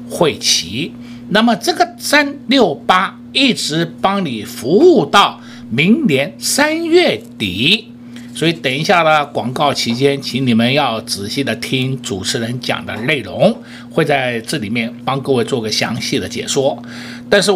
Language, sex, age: Chinese, male, 60-79